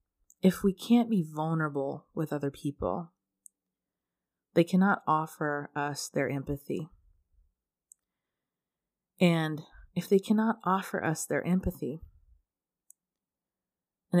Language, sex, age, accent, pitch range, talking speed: English, female, 30-49, American, 140-180 Hz, 95 wpm